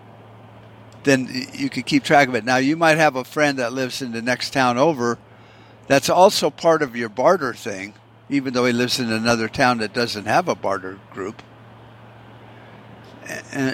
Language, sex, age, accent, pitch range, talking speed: English, male, 50-69, American, 115-145 Hz, 180 wpm